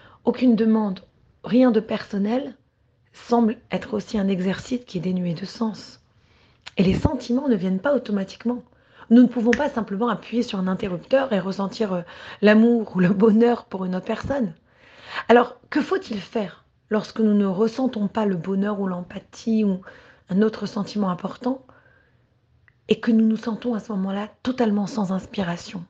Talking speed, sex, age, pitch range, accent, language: 160 wpm, female, 30-49, 190-235 Hz, French, French